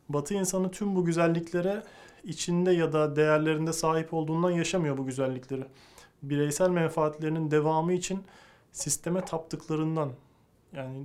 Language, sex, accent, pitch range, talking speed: Turkish, male, native, 150-170 Hz, 115 wpm